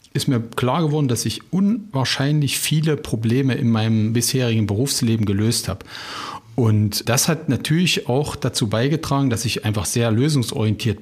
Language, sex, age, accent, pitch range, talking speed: German, male, 40-59, German, 110-135 Hz, 145 wpm